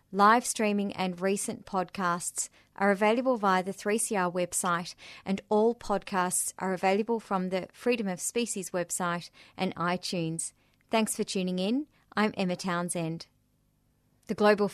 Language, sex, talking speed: English, female, 135 wpm